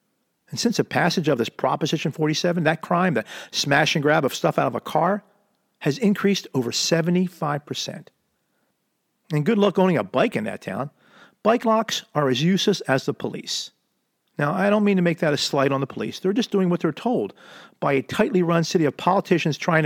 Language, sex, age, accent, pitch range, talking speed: English, male, 50-69, American, 160-235 Hz, 200 wpm